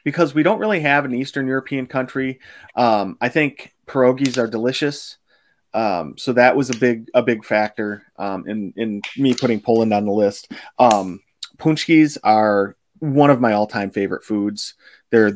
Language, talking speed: English, 170 wpm